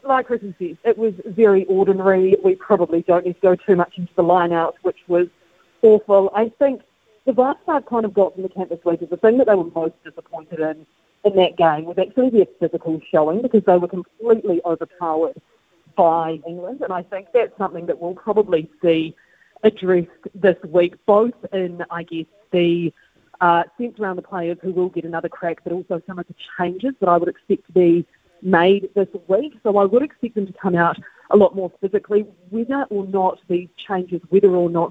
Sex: female